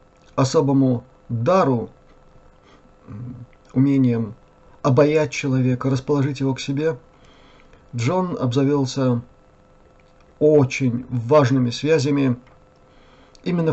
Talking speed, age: 65 wpm, 50-69